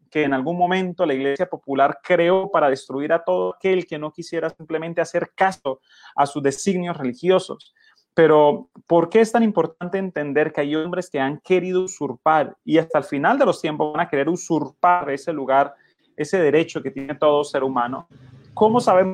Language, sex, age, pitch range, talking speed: Spanish, male, 30-49, 140-175 Hz, 185 wpm